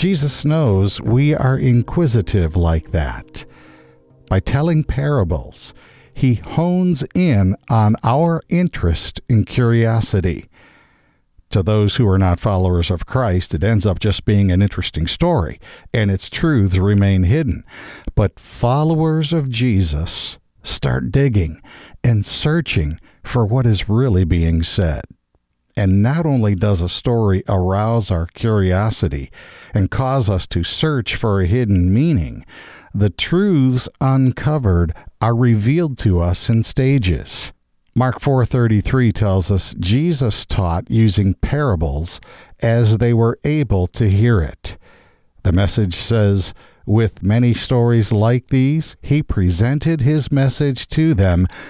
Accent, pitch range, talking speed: American, 95-130 Hz, 125 wpm